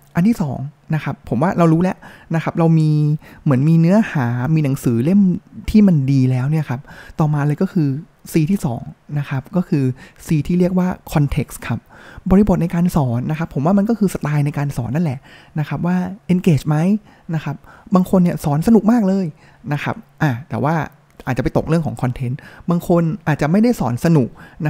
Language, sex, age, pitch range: Thai, male, 20-39, 135-170 Hz